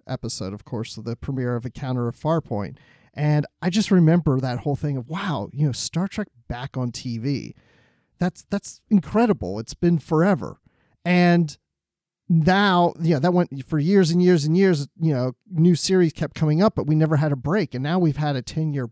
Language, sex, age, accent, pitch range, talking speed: English, male, 40-59, American, 130-185 Hz, 195 wpm